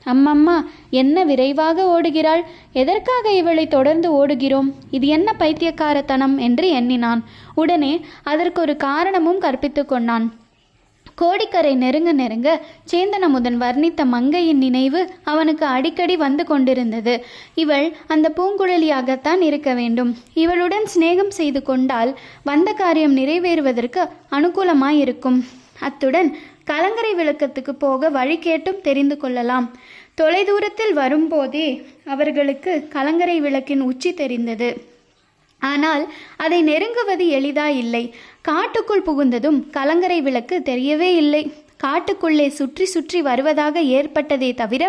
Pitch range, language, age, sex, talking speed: 265-335 Hz, Tamil, 20-39, female, 100 wpm